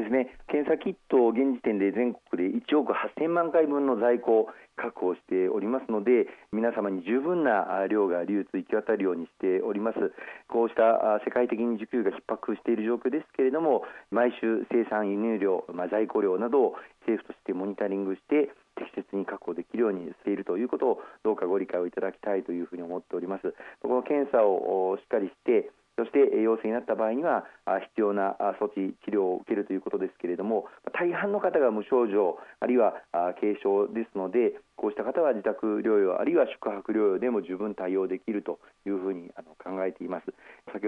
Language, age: Japanese, 40-59